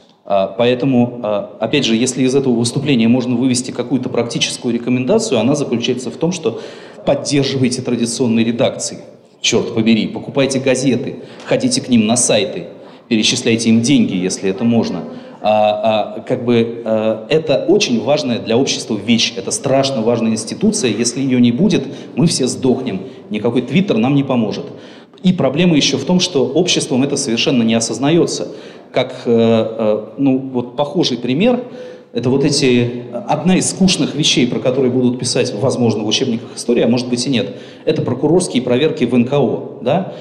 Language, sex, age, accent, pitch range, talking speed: Russian, male, 30-49, native, 120-160 Hz, 150 wpm